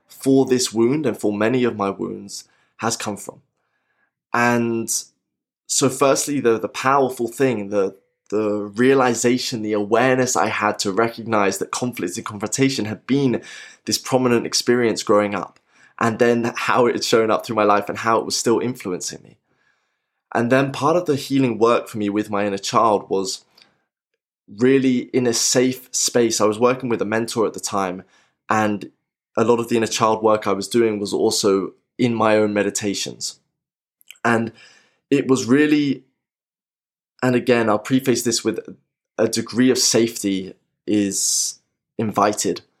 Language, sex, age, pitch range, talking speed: English, male, 20-39, 105-120 Hz, 165 wpm